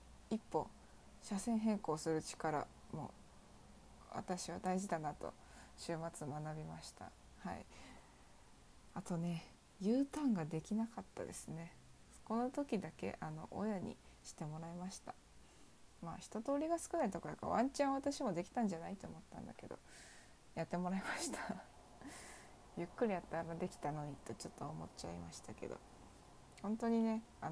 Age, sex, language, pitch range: 20-39, female, Japanese, 170-230 Hz